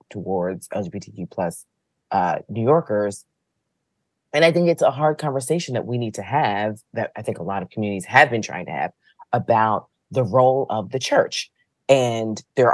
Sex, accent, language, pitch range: female, American, English, 105-145 Hz